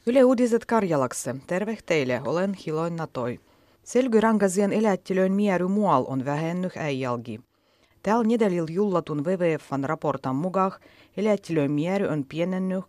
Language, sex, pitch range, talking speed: Finnish, female, 130-180 Hz, 105 wpm